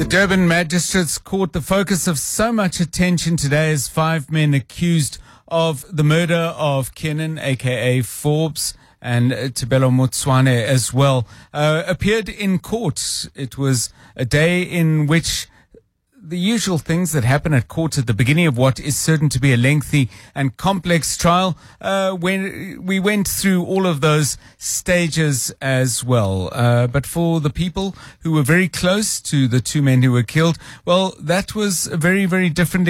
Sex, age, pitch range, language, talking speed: male, 40-59, 130-175 Hz, English, 170 wpm